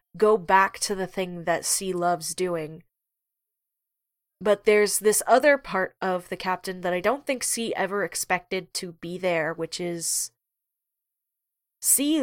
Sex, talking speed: female, 145 wpm